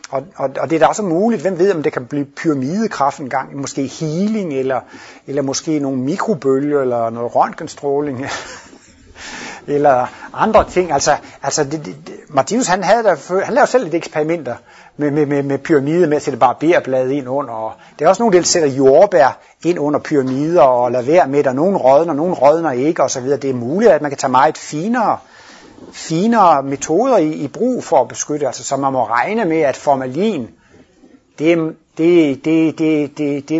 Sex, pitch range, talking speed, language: male, 135-165 Hz, 195 wpm, Danish